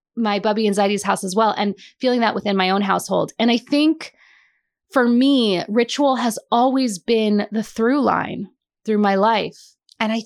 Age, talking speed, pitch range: 20-39, 180 wpm, 205-255 Hz